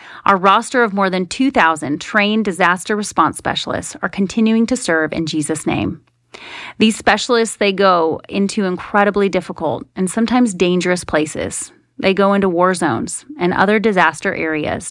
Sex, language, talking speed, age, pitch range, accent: female, English, 150 wpm, 30-49, 170-220 Hz, American